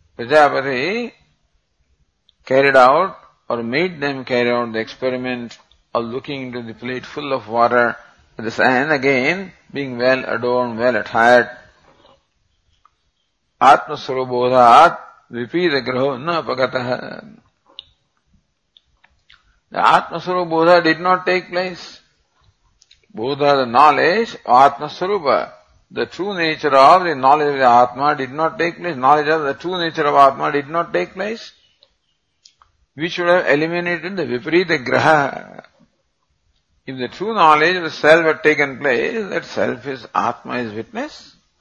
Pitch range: 120-165 Hz